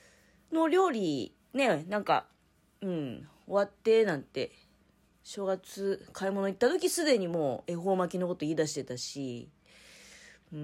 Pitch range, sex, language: 150-240 Hz, female, Japanese